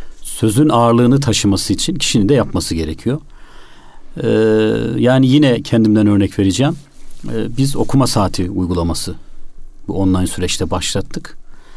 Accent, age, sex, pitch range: native, 40-59, male, 95-135 Hz